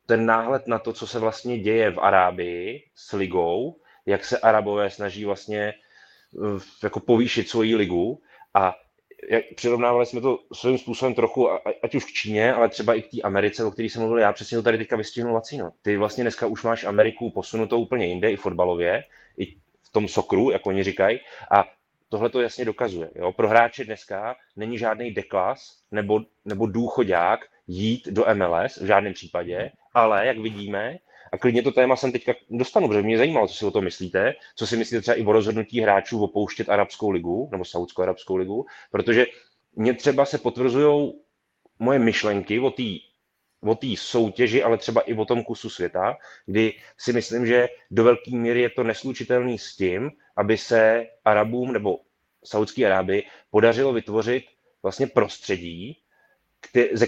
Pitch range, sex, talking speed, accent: 105-120 Hz, male, 170 wpm, native